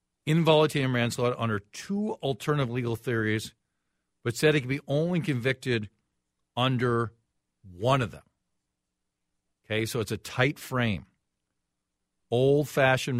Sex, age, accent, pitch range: male, 50-69, American, 95-130 Hz